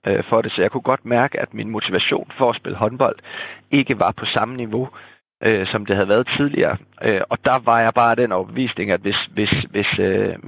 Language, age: Danish, 30-49